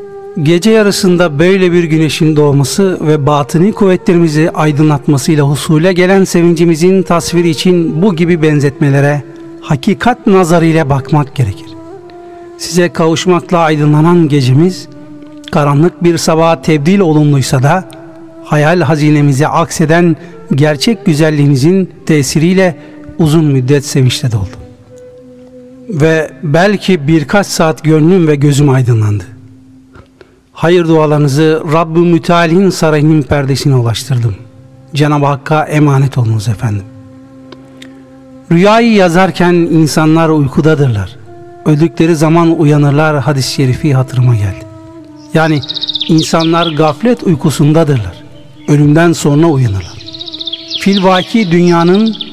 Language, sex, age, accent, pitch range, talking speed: Turkish, male, 60-79, native, 145-175 Hz, 95 wpm